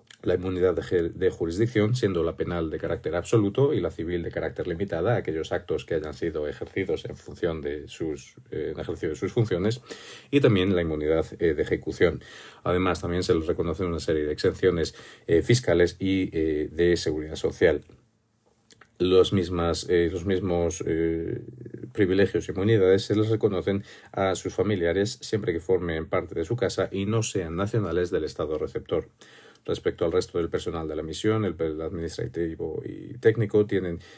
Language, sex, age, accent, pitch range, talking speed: Spanish, male, 40-59, Spanish, 85-110 Hz, 170 wpm